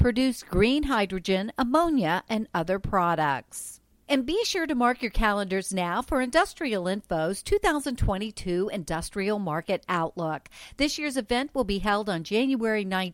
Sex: female